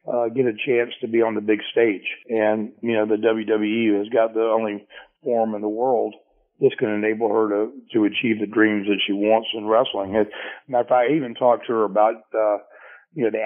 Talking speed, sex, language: 225 wpm, male, English